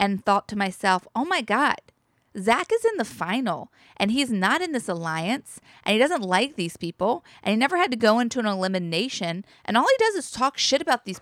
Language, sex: English, female